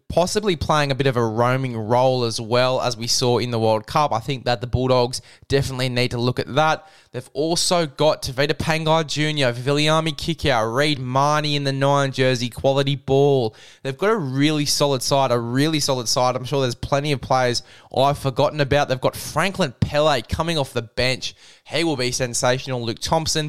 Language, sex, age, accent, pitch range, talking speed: English, male, 10-29, Australian, 125-145 Hz, 195 wpm